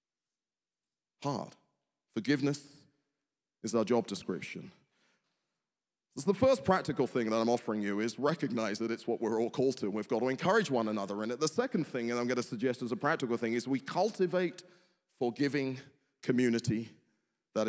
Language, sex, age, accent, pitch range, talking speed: English, male, 30-49, British, 145-200 Hz, 170 wpm